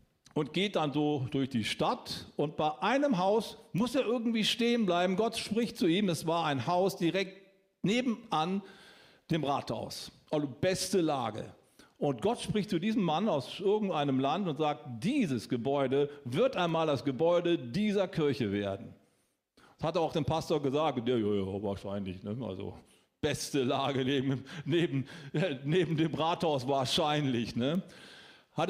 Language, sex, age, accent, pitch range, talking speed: German, male, 50-69, German, 145-205 Hz, 155 wpm